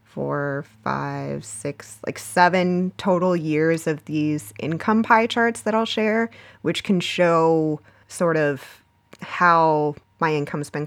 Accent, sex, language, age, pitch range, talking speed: American, female, English, 20-39, 150-180 Hz, 135 wpm